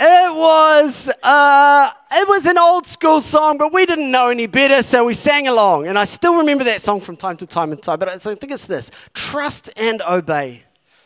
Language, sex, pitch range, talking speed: English, male, 175-265 Hz, 210 wpm